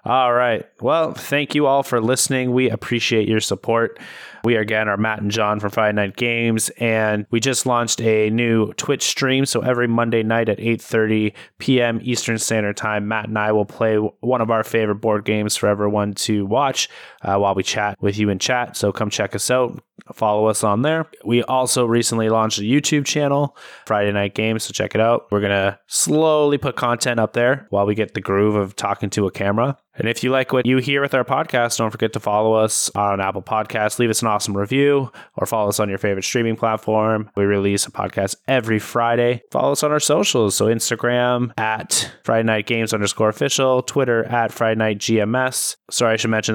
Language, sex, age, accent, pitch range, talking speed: English, male, 20-39, American, 105-125 Hz, 210 wpm